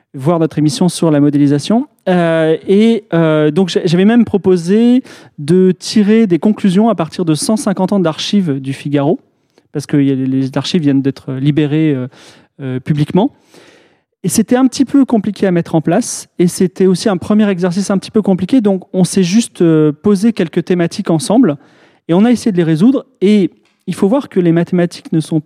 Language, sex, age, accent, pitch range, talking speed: French, male, 30-49, French, 155-200 Hz, 185 wpm